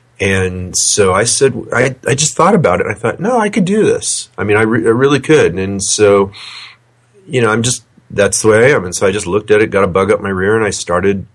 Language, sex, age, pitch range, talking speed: English, male, 30-49, 90-115 Hz, 270 wpm